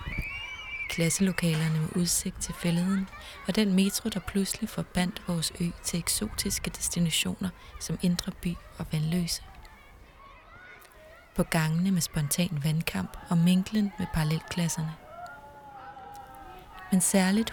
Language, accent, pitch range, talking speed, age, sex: Danish, native, 160-190 Hz, 110 wpm, 20-39, female